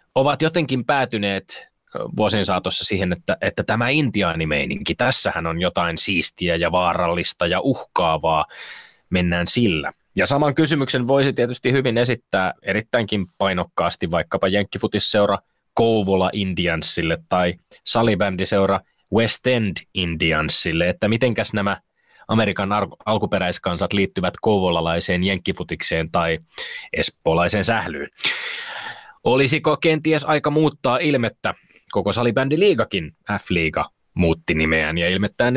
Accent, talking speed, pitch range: native, 100 wpm, 95-125 Hz